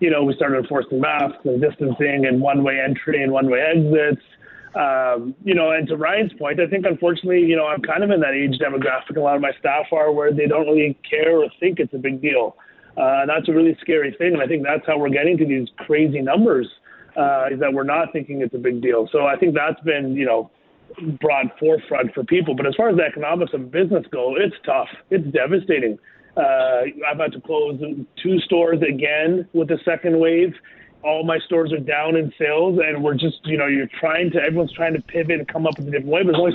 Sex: male